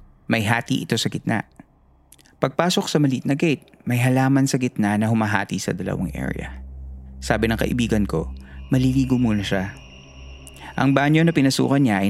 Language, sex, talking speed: Filipino, male, 165 wpm